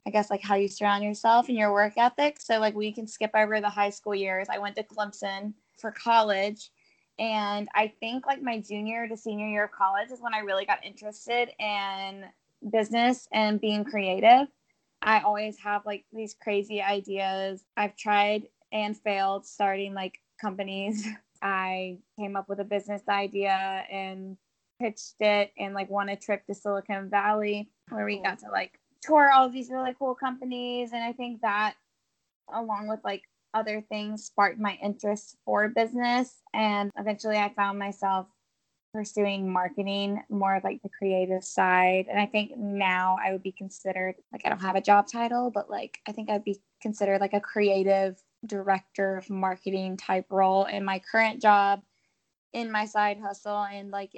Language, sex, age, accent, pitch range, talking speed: English, female, 10-29, American, 195-215 Hz, 175 wpm